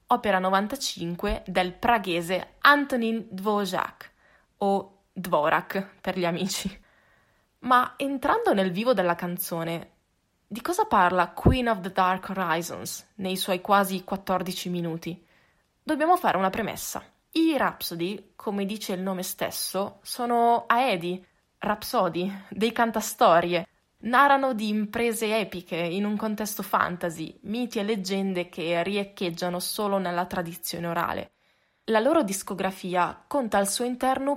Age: 20-39